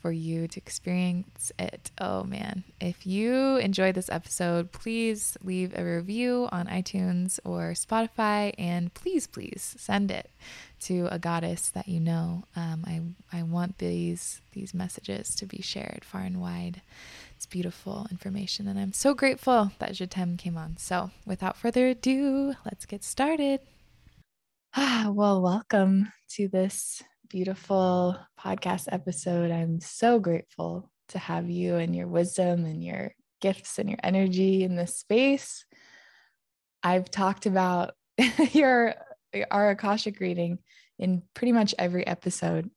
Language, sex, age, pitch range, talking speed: English, female, 20-39, 170-205 Hz, 140 wpm